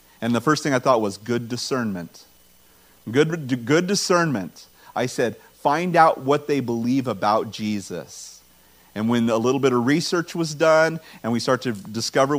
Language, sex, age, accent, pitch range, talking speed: English, male, 40-59, American, 115-155 Hz, 170 wpm